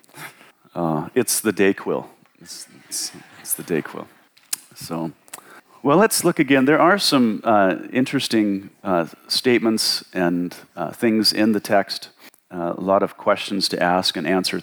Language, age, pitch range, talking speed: English, 40-59, 90-115 Hz, 155 wpm